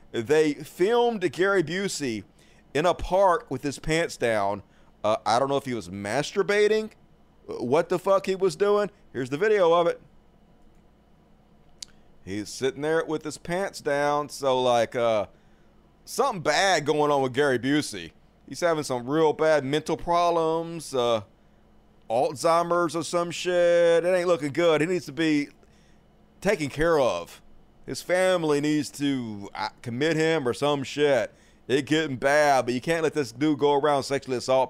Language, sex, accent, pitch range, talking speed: English, male, American, 130-175 Hz, 160 wpm